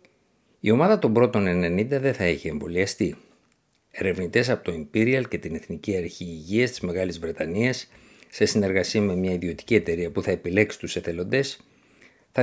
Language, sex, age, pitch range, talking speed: Greek, male, 50-69, 90-115 Hz, 160 wpm